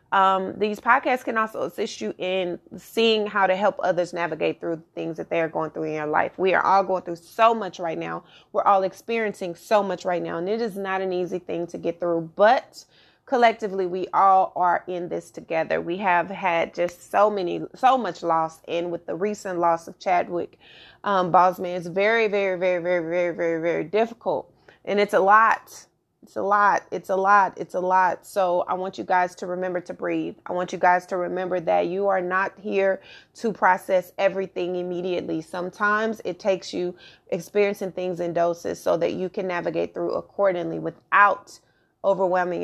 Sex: female